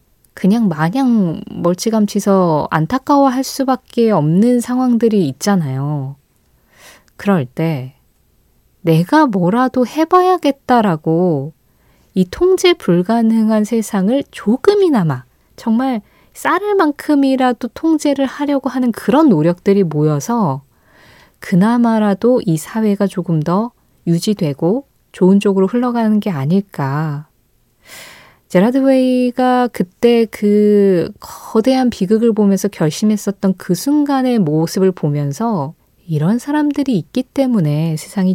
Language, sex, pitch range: Korean, female, 165-245 Hz